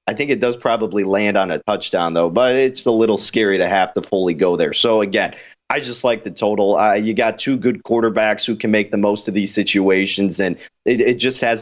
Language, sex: English, male